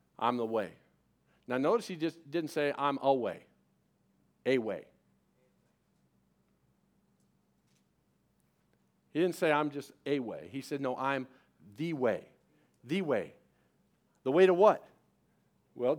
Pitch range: 150-230 Hz